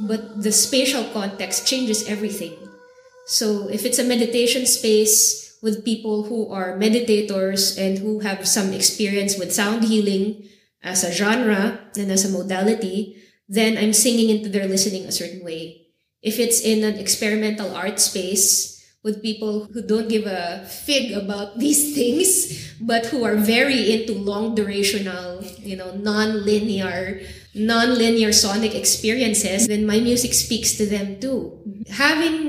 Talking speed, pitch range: 145 wpm, 190-220 Hz